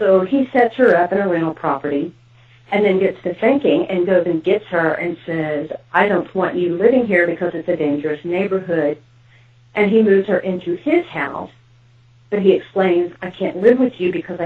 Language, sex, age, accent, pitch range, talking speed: English, female, 40-59, American, 150-190 Hz, 200 wpm